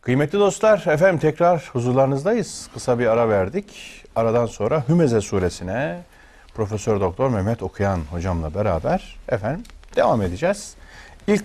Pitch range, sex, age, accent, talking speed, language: 90-145 Hz, male, 40-59, native, 120 wpm, Turkish